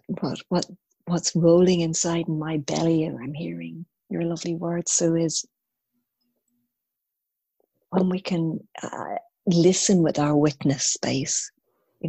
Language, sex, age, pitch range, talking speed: English, female, 40-59, 145-175 Hz, 125 wpm